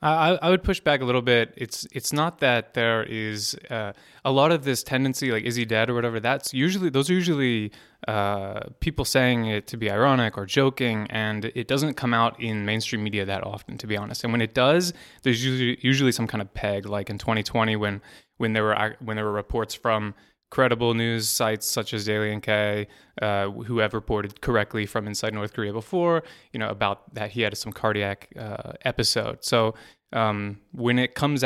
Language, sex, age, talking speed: English, male, 20-39, 210 wpm